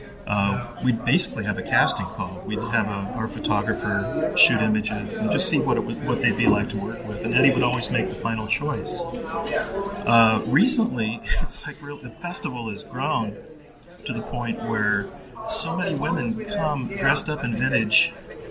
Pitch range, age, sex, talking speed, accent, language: 115-160 Hz, 40-59, male, 160 wpm, American, English